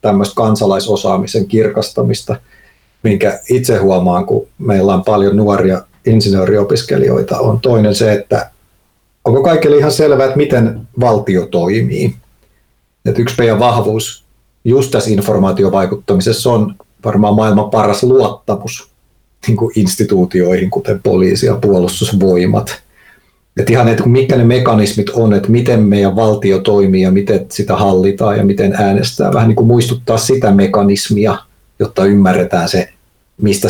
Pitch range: 100-125 Hz